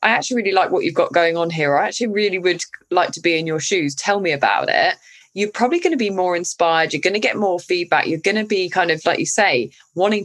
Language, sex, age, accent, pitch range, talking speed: English, female, 20-39, British, 170-225 Hz, 275 wpm